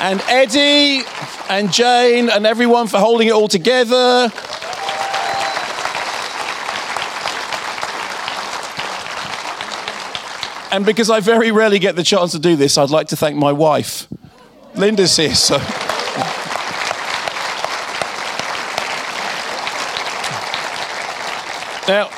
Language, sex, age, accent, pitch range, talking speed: English, male, 40-59, British, 145-220 Hz, 85 wpm